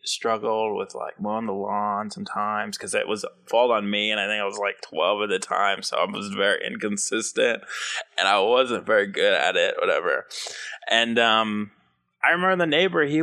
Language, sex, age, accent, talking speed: English, male, 20-39, American, 195 wpm